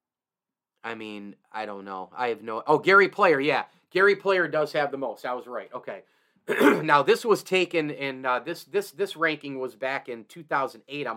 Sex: male